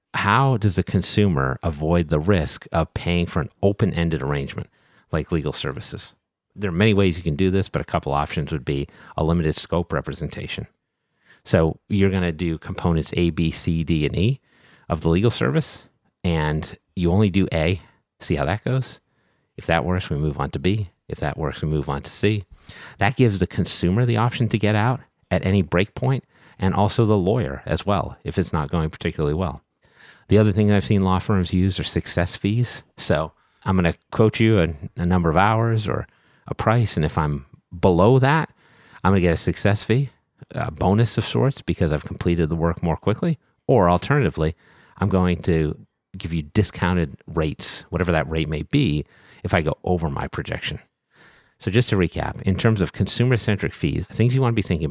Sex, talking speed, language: male, 200 wpm, English